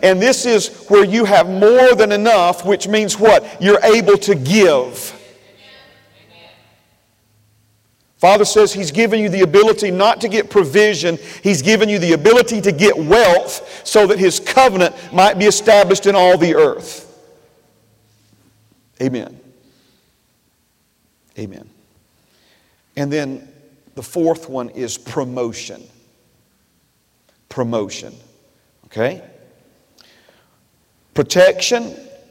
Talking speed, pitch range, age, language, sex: 110 wpm, 145-205 Hz, 50-69, English, male